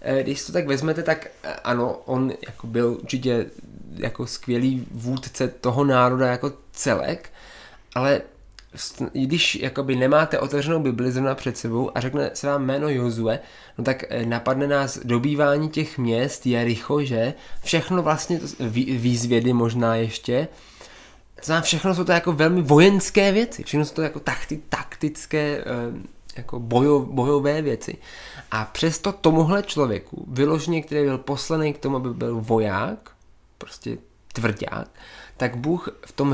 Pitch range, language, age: 120-145 Hz, English, 20-39